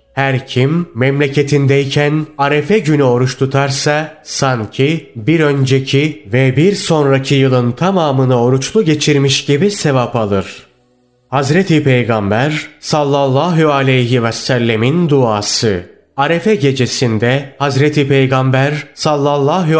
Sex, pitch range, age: male, 125-150 Hz, 30-49